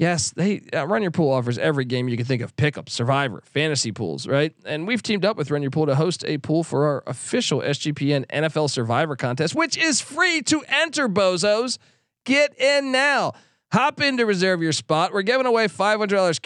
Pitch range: 135-195 Hz